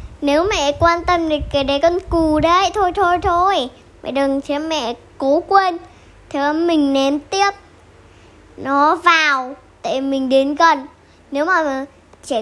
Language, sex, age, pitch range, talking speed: Vietnamese, male, 10-29, 270-335 Hz, 160 wpm